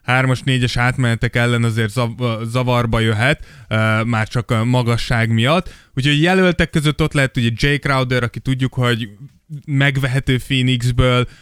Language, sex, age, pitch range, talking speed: Hungarian, male, 20-39, 120-145 Hz, 145 wpm